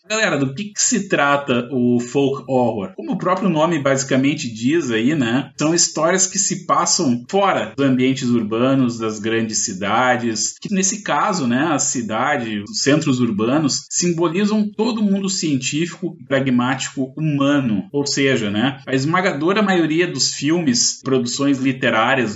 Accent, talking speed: Brazilian, 145 wpm